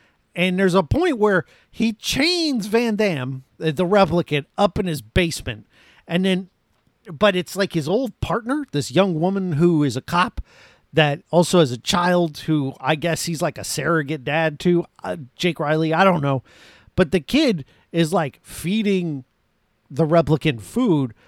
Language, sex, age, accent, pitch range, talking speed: English, male, 50-69, American, 145-195 Hz, 165 wpm